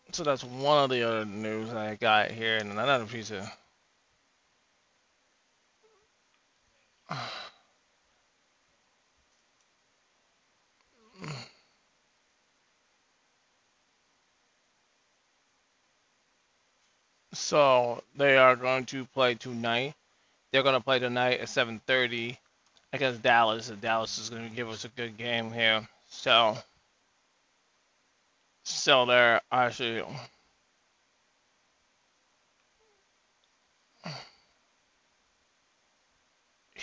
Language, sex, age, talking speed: English, male, 20-39, 75 wpm